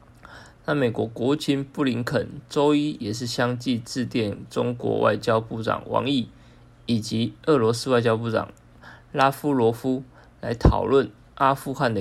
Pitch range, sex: 115-135 Hz, male